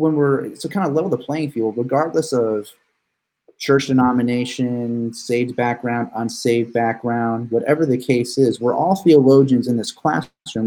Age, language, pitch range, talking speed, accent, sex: 30-49, English, 110-130 Hz, 155 wpm, American, male